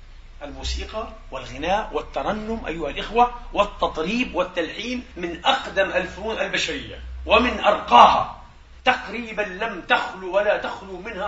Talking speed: 100 wpm